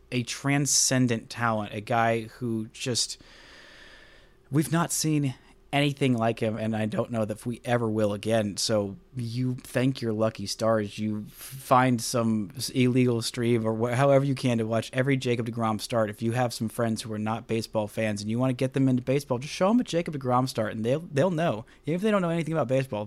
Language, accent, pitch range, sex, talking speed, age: English, American, 110-135 Hz, male, 210 wpm, 30-49